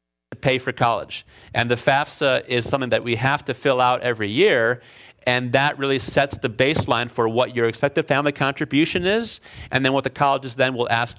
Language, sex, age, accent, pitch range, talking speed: English, male, 40-59, American, 120-150 Hz, 205 wpm